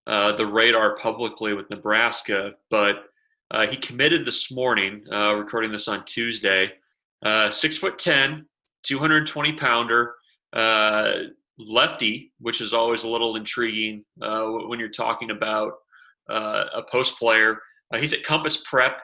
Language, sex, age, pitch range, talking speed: English, male, 30-49, 105-125 Hz, 140 wpm